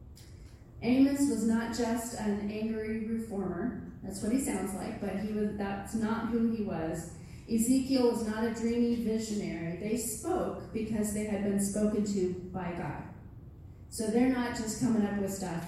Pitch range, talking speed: 190-235 Hz, 170 wpm